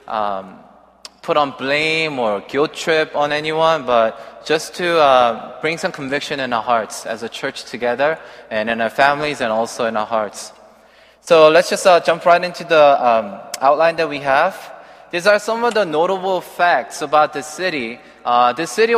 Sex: male